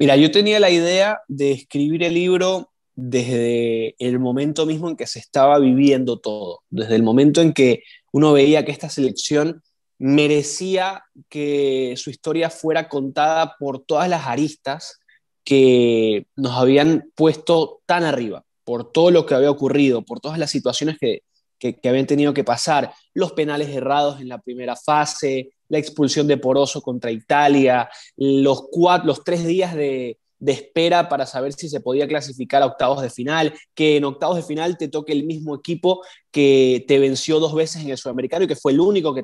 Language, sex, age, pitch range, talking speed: Spanish, male, 20-39, 135-170 Hz, 180 wpm